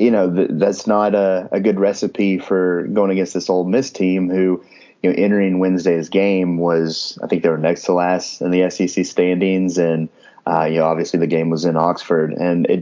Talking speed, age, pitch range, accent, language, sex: 215 wpm, 30-49, 85-95 Hz, American, English, male